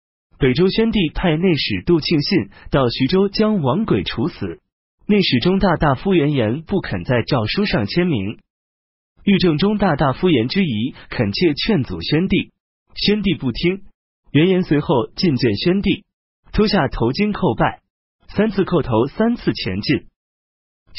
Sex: male